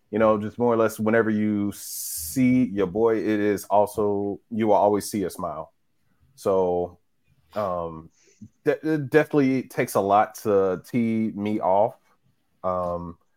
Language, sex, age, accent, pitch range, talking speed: English, male, 30-49, American, 105-130 Hz, 150 wpm